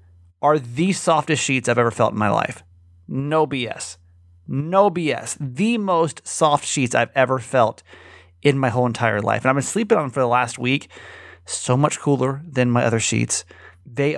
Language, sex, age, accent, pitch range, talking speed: English, male, 30-49, American, 115-160 Hz, 185 wpm